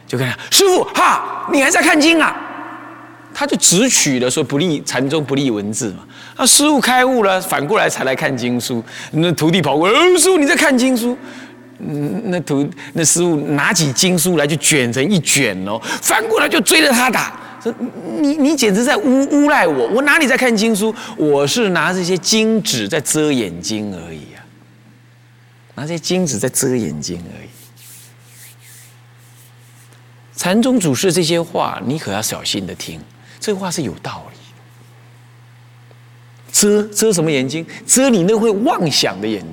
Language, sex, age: Chinese, male, 30-49